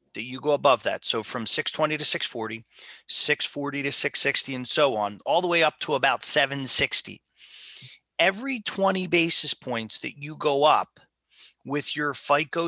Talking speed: 160 wpm